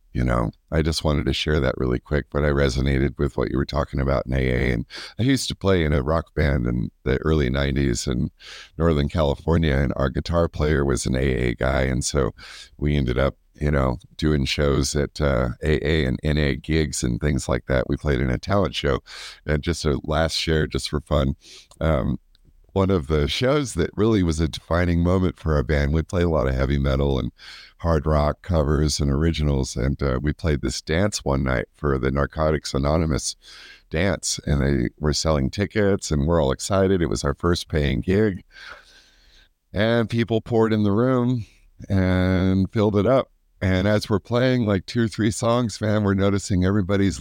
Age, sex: 50-69, male